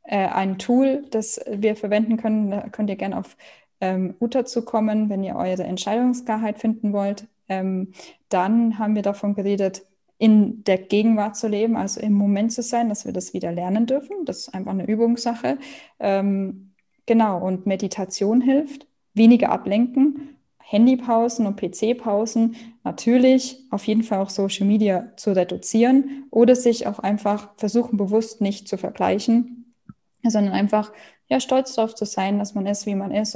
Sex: female